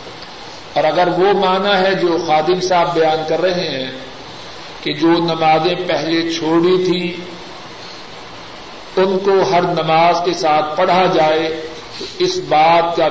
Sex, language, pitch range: male, Urdu, 160-190 Hz